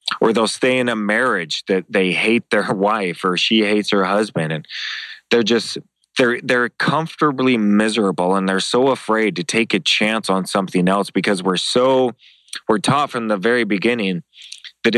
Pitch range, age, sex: 90-110 Hz, 20-39, male